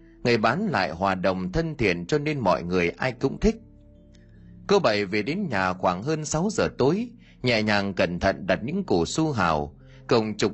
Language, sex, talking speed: Vietnamese, male, 200 wpm